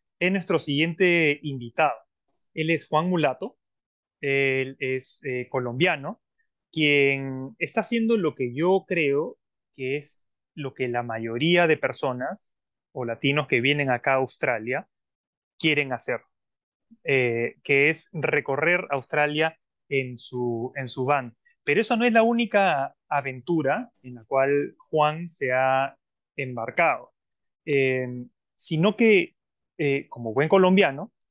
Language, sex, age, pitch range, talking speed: Spanish, male, 20-39, 135-190 Hz, 125 wpm